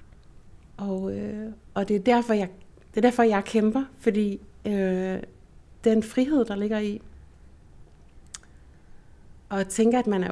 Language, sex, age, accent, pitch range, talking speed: Danish, female, 60-79, native, 185-220 Hz, 110 wpm